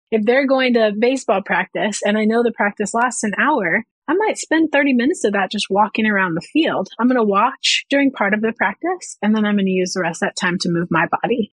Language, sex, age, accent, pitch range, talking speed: English, female, 30-49, American, 190-245 Hz, 260 wpm